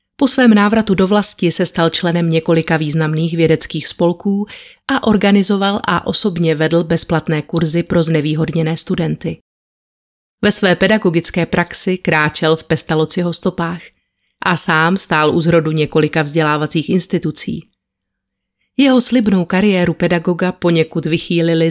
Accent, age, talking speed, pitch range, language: native, 30-49, 120 wpm, 160-180 Hz, Czech